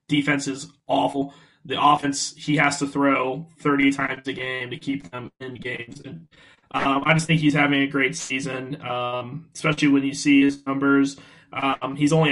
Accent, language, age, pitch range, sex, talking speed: American, English, 20-39, 130-150 Hz, male, 180 wpm